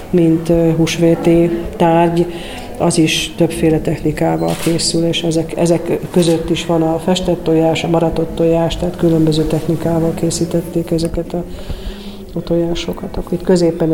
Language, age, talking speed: Hungarian, 40-59, 130 wpm